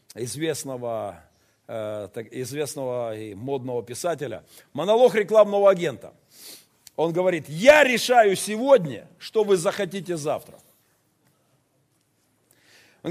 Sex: male